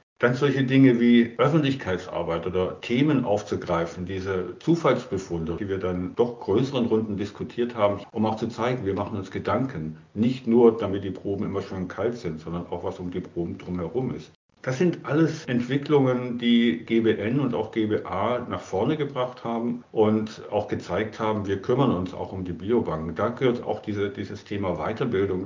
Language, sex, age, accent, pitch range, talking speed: German, male, 50-69, German, 90-120 Hz, 170 wpm